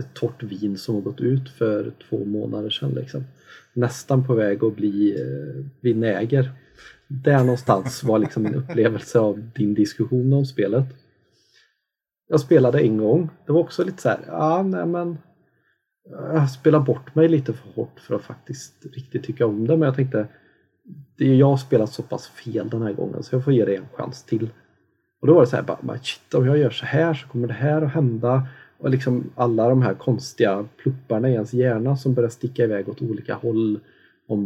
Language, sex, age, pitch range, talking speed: Swedish, male, 30-49, 110-140 Hz, 200 wpm